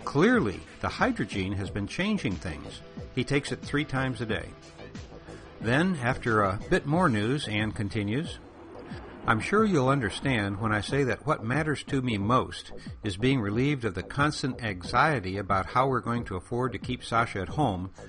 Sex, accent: male, American